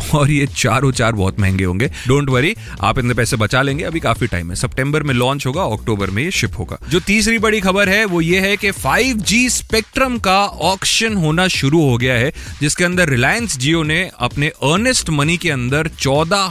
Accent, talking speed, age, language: native, 180 wpm, 30-49, Hindi